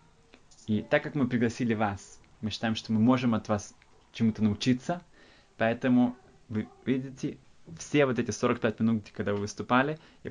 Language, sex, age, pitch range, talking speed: Russian, male, 20-39, 110-130 Hz, 155 wpm